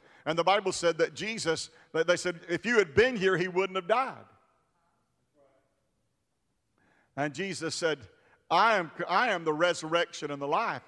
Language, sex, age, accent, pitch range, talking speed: English, male, 50-69, American, 160-200 Hz, 155 wpm